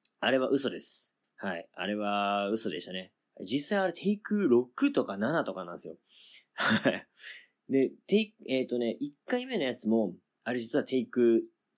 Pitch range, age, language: 100-170 Hz, 30-49, Japanese